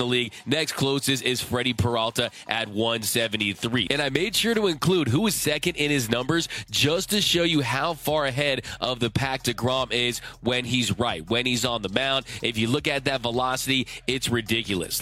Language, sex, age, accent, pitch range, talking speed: English, male, 20-39, American, 120-150 Hz, 195 wpm